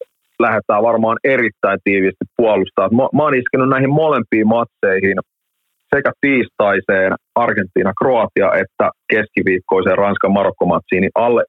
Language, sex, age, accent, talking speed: Finnish, male, 30-49, native, 100 wpm